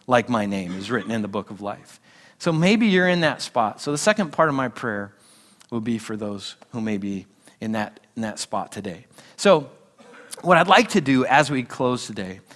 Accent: American